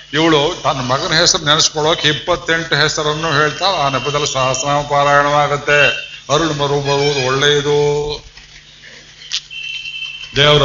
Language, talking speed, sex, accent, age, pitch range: Kannada, 95 wpm, male, native, 50-69, 130-165 Hz